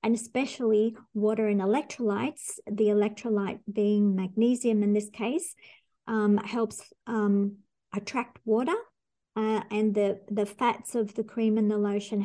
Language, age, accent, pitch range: English, 50-69, Australian, 210-235 Hz